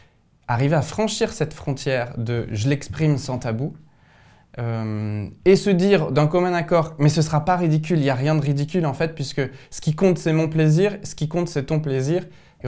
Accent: French